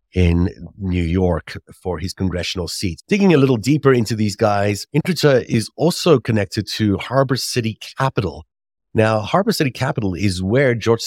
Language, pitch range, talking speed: English, 95-120 Hz, 155 wpm